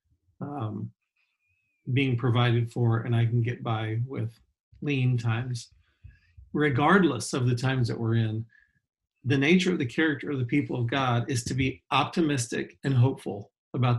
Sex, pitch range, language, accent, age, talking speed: male, 115-145 Hz, English, American, 40-59, 155 wpm